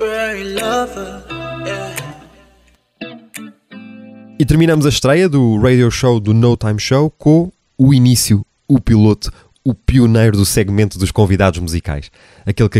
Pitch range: 90-115 Hz